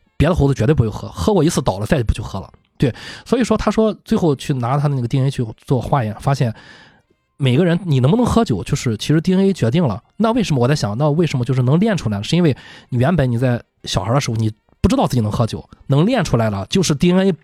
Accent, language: native, Chinese